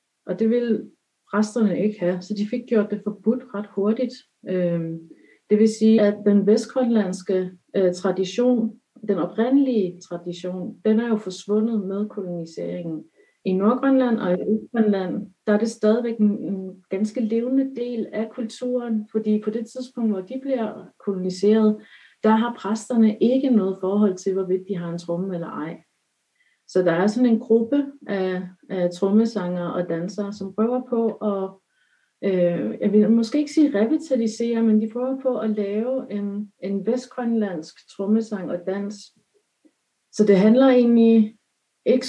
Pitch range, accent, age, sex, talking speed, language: 190-230 Hz, native, 40-59, female, 150 wpm, Danish